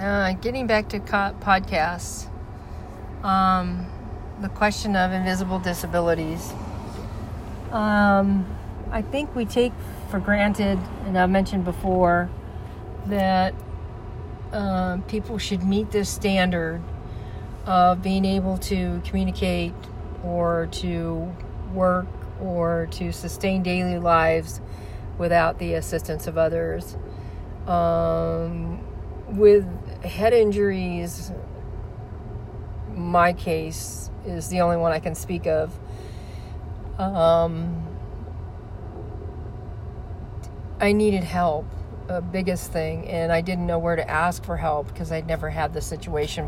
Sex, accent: female, American